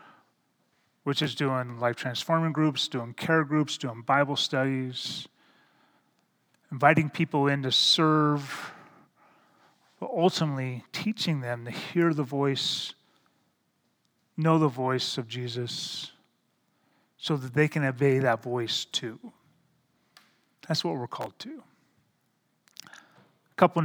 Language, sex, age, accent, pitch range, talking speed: English, male, 30-49, American, 130-170 Hz, 110 wpm